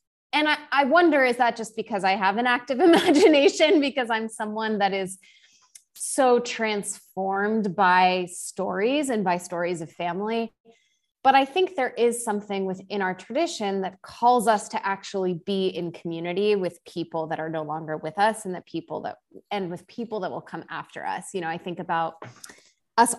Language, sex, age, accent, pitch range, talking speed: English, female, 20-39, American, 180-245 Hz, 180 wpm